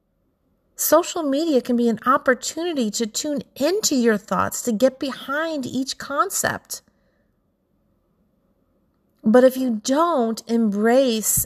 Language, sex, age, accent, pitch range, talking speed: English, female, 40-59, American, 200-260 Hz, 110 wpm